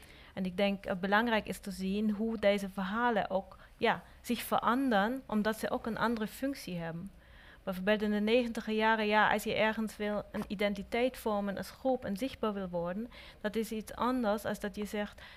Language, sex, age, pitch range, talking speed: Dutch, female, 30-49, 200-240 Hz, 185 wpm